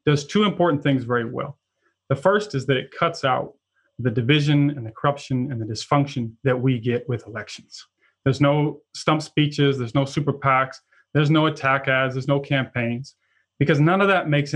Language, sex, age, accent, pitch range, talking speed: English, male, 30-49, American, 125-150 Hz, 190 wpm